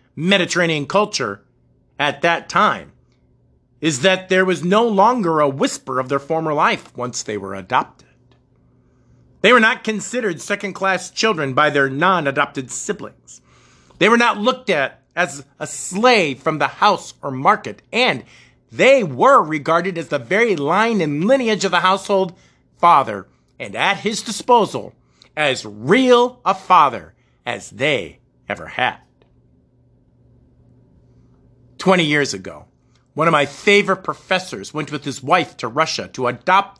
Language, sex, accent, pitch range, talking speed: English, male, American, 130-190 Hz, 140 wpm